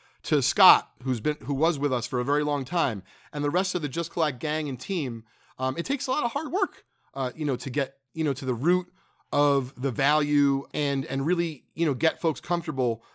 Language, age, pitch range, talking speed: English, 40-59, 130-180 Hz, 235 wpm